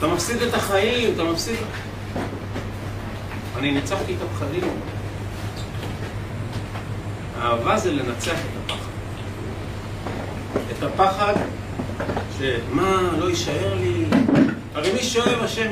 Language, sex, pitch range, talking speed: Hebrew, male, 100-110 Hz, 95 wpm